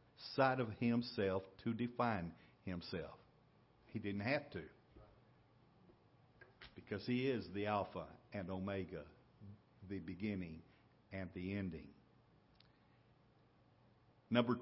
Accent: American